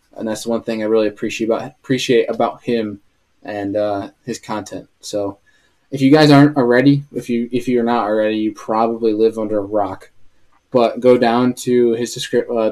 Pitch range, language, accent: 110-130 Hz, English, American